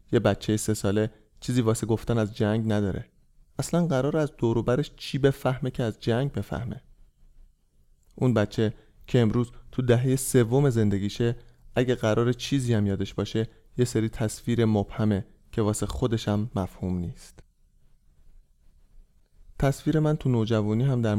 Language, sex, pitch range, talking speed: Persian, male, 105-125 Hz, 145 wpm